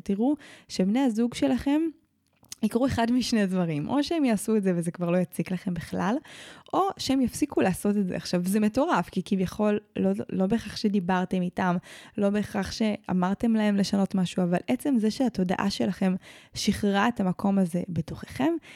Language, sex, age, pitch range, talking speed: Hebrew, female, 20-39, 180-230 Hz, 165 wpm